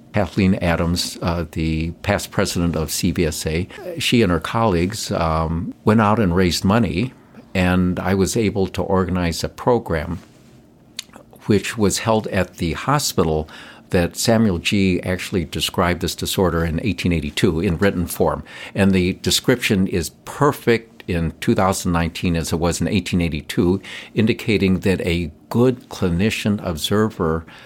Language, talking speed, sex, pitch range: English, 130 wpm, male, 85-100 Hz